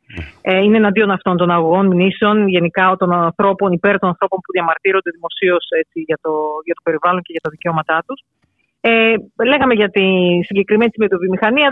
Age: 40-59